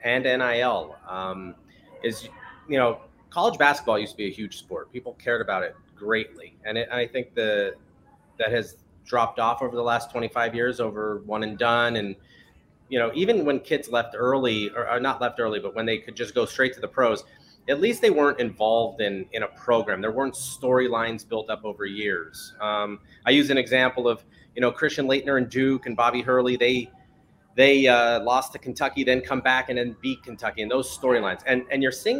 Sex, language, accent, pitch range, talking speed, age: male, English, American, 115-135 Hz, 210 wpm, 30-49